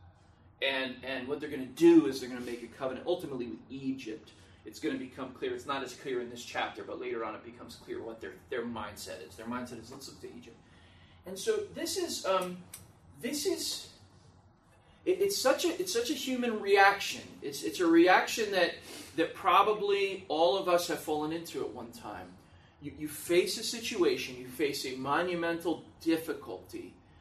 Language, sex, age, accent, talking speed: English, male, 30-49, American, 195 wpm